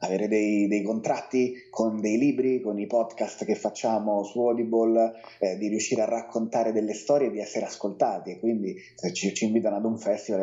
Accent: native